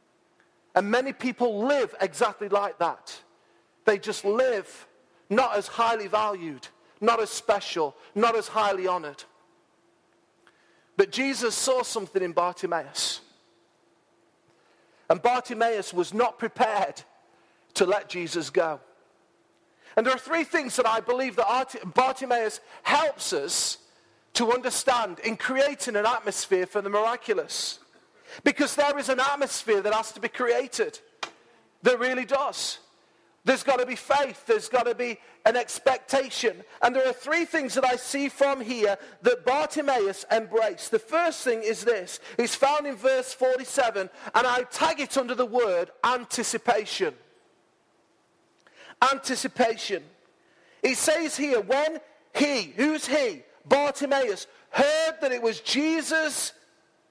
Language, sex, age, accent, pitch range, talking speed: English, male, 40-59, British, 220-280 Hz, 135 wpm